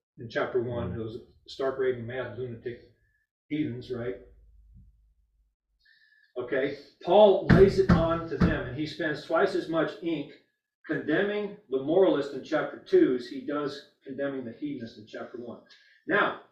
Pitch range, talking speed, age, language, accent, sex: 125-200 Hz, 145 wpm, 40-59, English, American, male